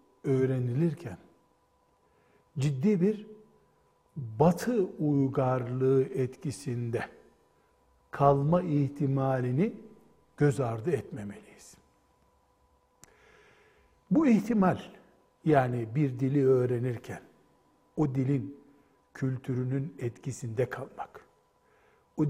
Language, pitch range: Turkish, 130-175 Hz